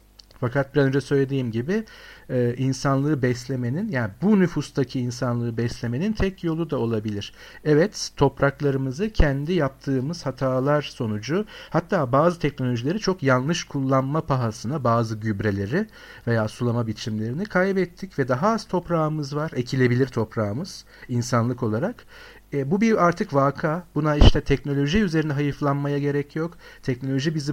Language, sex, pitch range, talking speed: Turkish, male, 125-160 Hz, 125 wpm